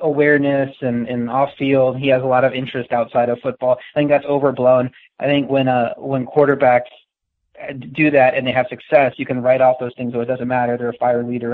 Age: 20-39